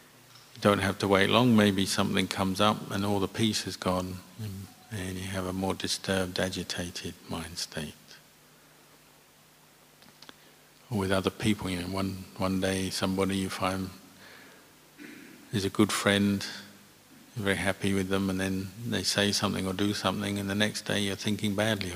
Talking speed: 160 wpm